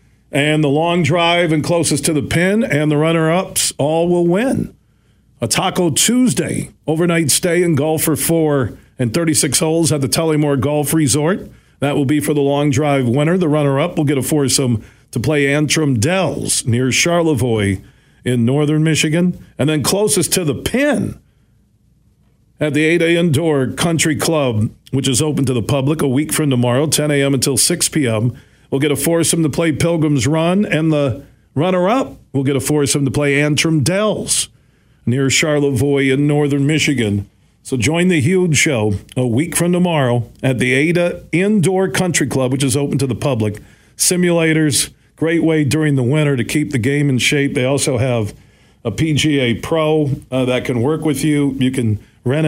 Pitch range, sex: 130-160 Hz, male